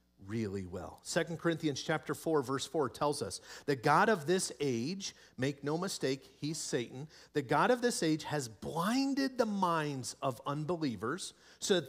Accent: American